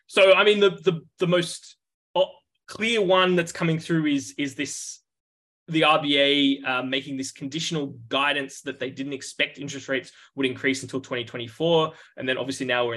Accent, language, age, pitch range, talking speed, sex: Australian, English, 20-39, 130-160 Hz, 180 wpm, male